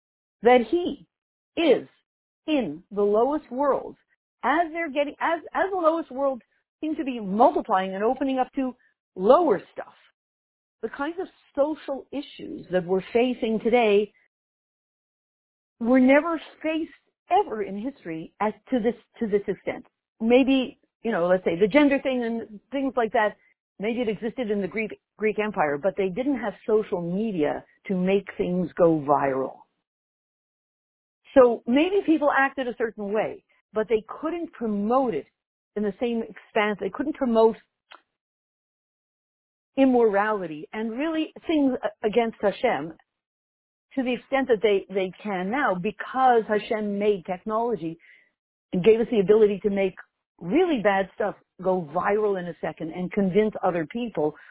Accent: American